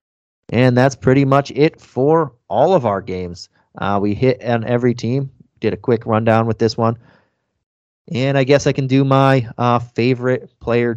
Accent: American